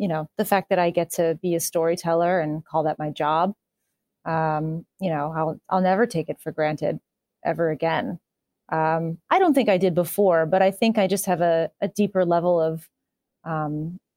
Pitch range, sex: 165-215 Hz, female